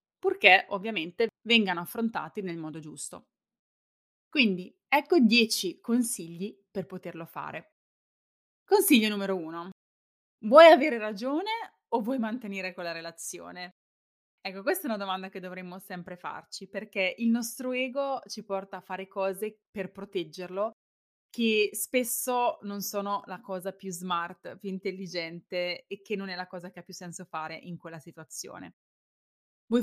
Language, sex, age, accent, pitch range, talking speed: Italian, female, 20-39, native, 185-230 Hz, 140 wpm